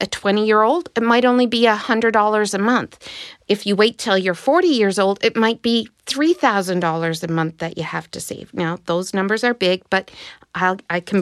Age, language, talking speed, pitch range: 50-69, English, 200 wpm, 190-240 Hz